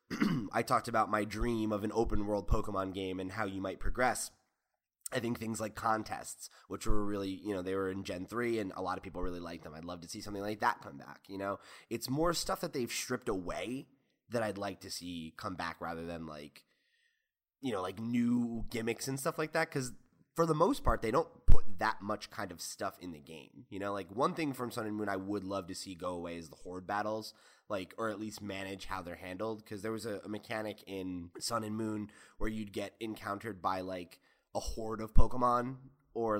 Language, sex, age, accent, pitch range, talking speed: English, male, 20-39, American, 95-115 Hz, 230 wpm